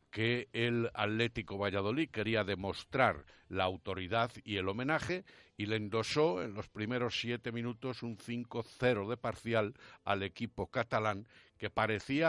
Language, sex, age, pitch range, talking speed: Spanish, male, 60-79, 95-120 Hz, 135 wpm